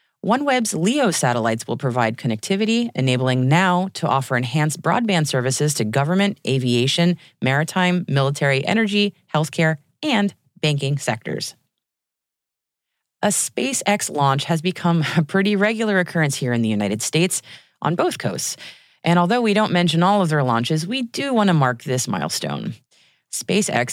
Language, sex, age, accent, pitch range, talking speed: English, female, 30-49, American, 130-195 Hz, 145 wpm